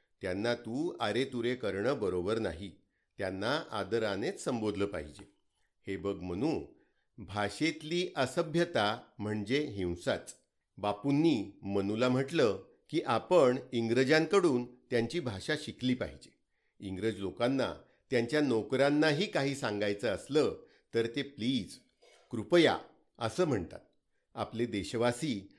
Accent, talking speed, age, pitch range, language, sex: native, 105 wpm, 50-69, 105-145 Hz, Marathi, male